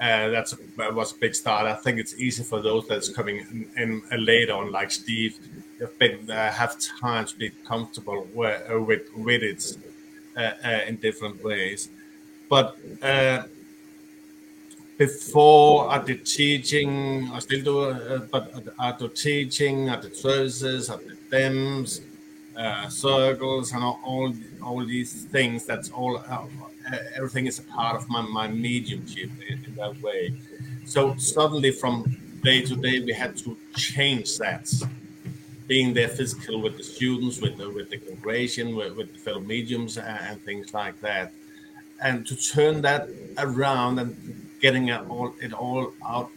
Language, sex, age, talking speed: English, male, 50-69, 165 wpm